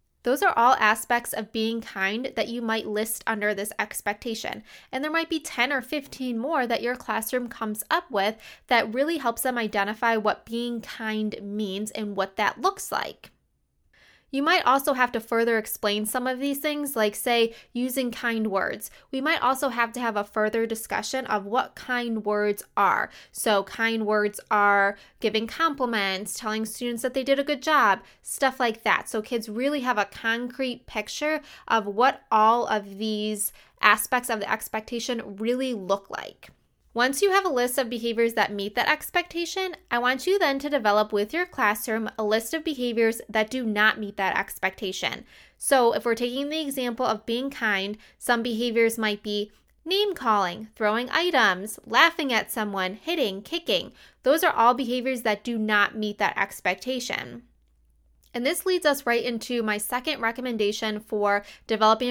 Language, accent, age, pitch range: English, American, 20-39, 215-260 Hz